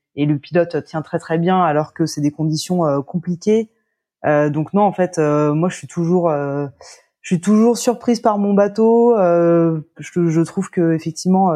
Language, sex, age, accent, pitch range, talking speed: French, female, 20-39, French, 155-185 Hz, 195 wpm